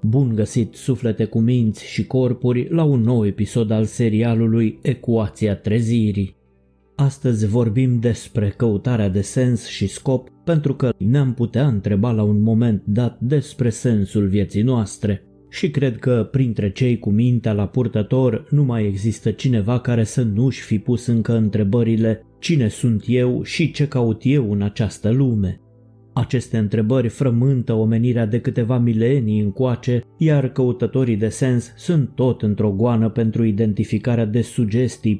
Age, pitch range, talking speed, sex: 20-39, 110-125 Hz, 145 wpm, male